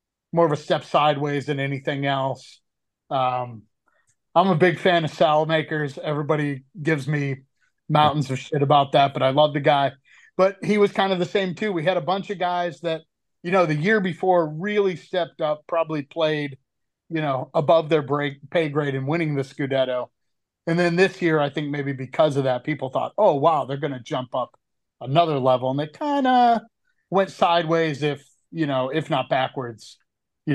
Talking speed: 195 wpm